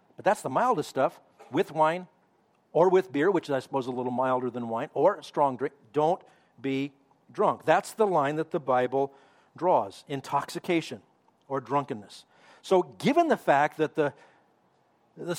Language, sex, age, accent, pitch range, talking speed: English, male, 50-69, American, 135-165 Hz, 170 wpm